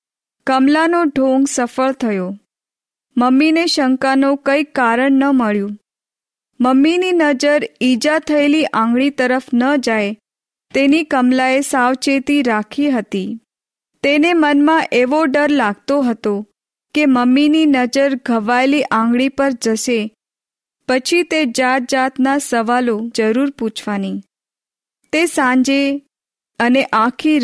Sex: female